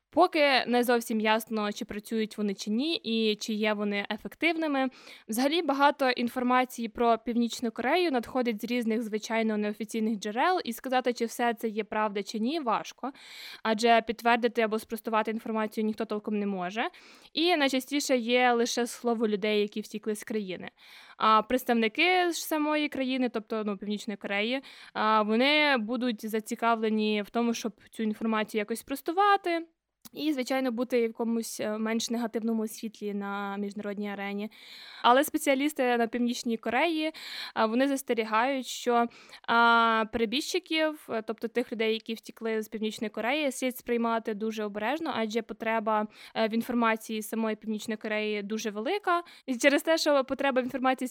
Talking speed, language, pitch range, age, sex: 145 wpm, Ukrainian, 220-255 Hz, 20-39, female